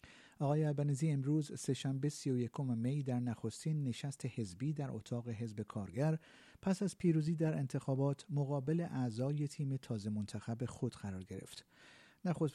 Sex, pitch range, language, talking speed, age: male, 120-155 Hz, Persian, 140 wpm, 50-69